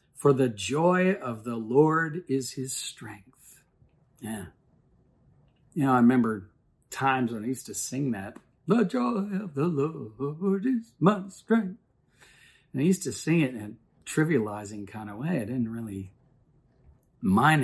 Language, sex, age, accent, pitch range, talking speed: English, male, 50-69, American, 105-140 Hz, 155 wpm